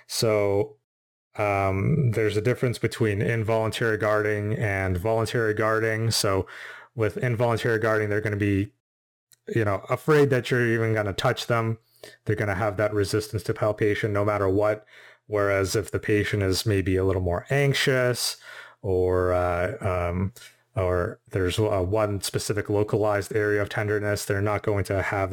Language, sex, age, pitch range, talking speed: English, male, 30-49, 95-110 Hz, 155 wpm